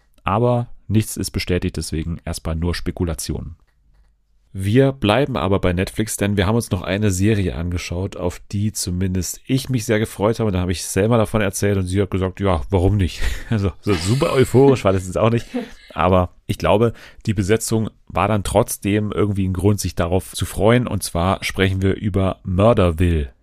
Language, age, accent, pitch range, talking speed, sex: German, 30-49, German, 85-110 Hz, 185 wpm, male